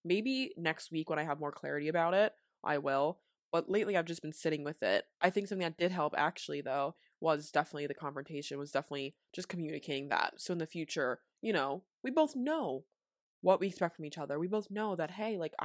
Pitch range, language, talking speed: 155-195 Hz, English, 220 wpm